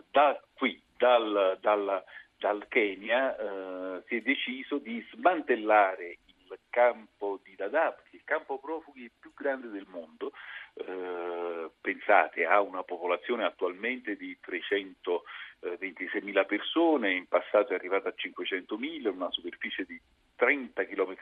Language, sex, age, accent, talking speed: Italian, male, 50-69, native, 125 wpm